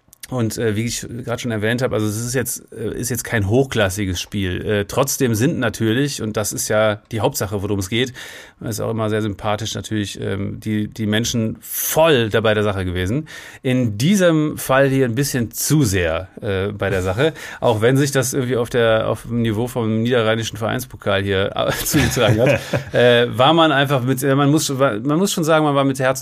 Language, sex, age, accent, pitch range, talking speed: German, male, 30-49, German, 110-140 Hz, 210 wpm